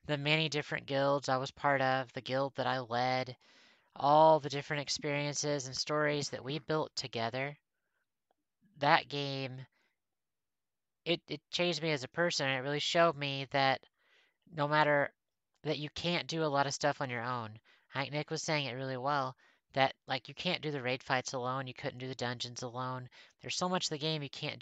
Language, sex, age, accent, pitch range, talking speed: English, female, 30-49, American, 130-155 Hz, 195 wpm